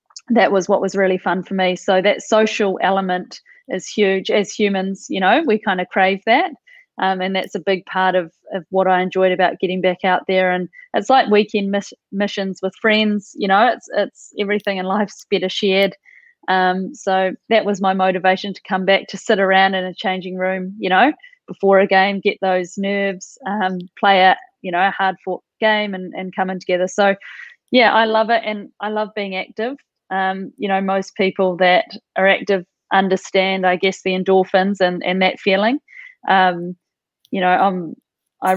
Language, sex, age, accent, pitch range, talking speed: English, female, 20-39, Australian, 190-205 Hz, 195 wpm